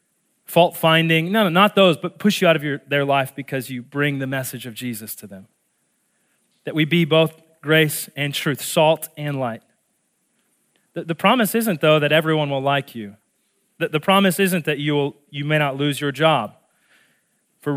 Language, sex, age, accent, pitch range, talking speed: English, male, 30-49, American, 145-210 Hz, 195 wpm